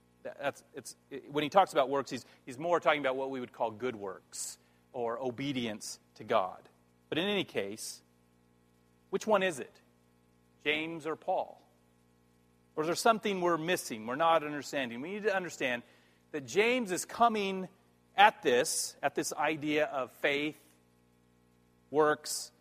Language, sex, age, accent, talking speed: English, male, 40-59, American, 155 wpm